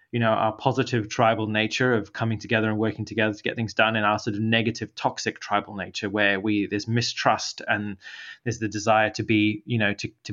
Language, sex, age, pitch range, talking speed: English, male, 20-39, 110-125 Hz, 220 wpm